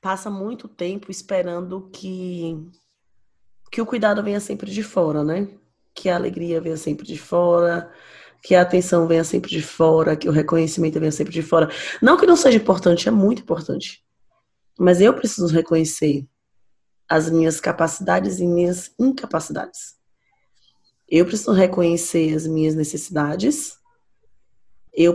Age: 20-39